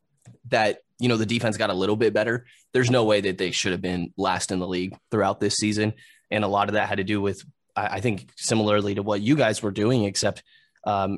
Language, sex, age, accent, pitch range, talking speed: English, male, 20-39, American, 100-115 Hz, 240 wpm